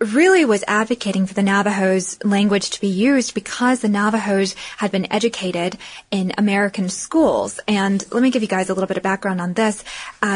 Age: 10-29